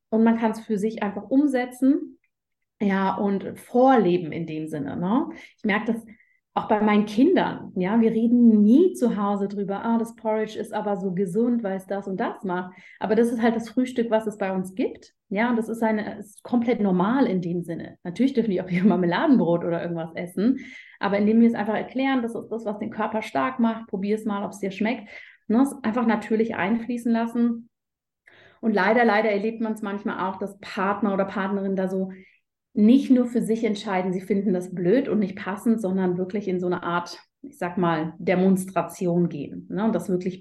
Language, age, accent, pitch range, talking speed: German, 30-49, German, 195-230 Hz, 210 wpm